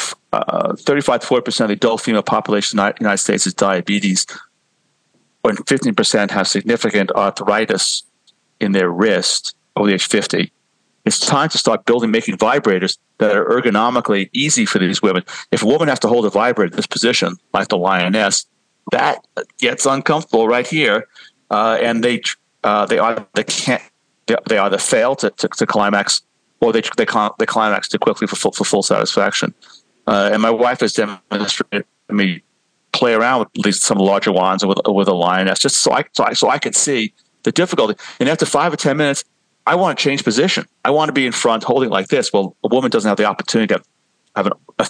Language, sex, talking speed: English, male, 200 wpm